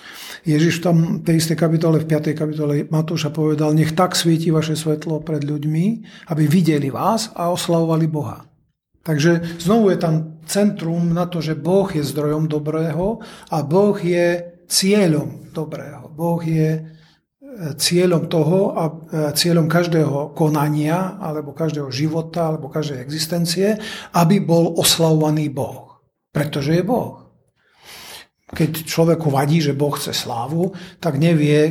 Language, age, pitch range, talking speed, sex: Czech, 40-59, 150-175 Hz, 135 wpm, male